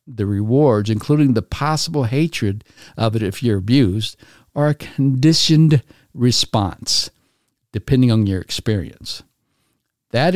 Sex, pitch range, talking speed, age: male, 105-135 Hz, 115 wpm, 60-79